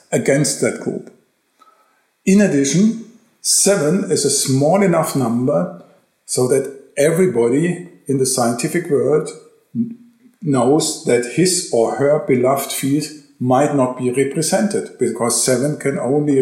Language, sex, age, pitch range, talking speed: English, male, 50-69, 130-195 Hz, 120 wpm